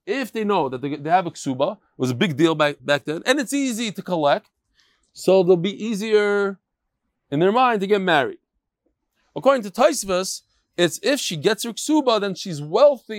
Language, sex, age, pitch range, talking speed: English, male, 30-49, 160-220 Hz, 190 wpm